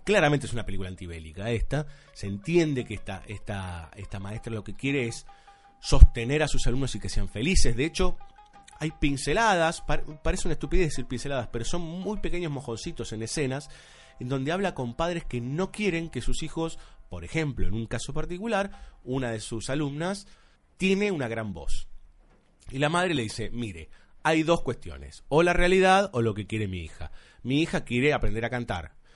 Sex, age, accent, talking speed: male, 30-49, Argentinian, 185 wpm